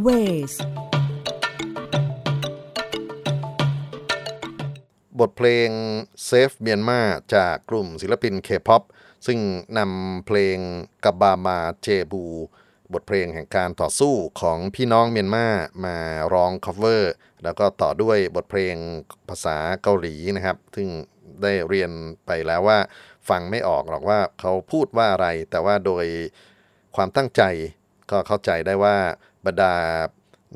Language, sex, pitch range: Thai, male, 95-120 Hz